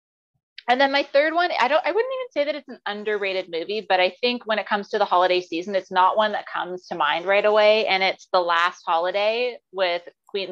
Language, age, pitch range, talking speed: English, 30-49, 185-245 Hz, 240 wpm